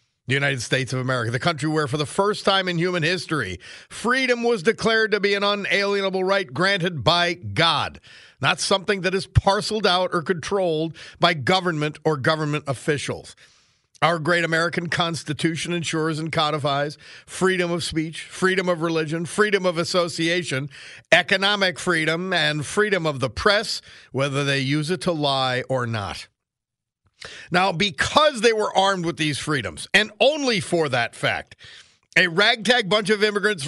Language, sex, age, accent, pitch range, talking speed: English, male, 50-69, American, 155-200 Hz, 155 wpm